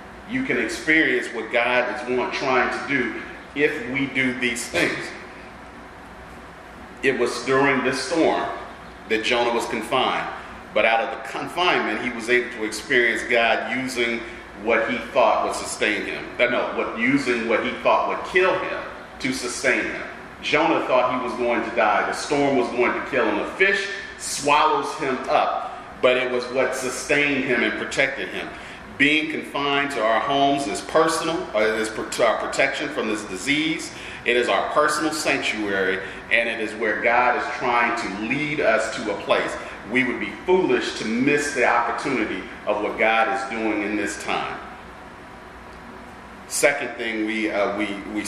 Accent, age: American, 40-59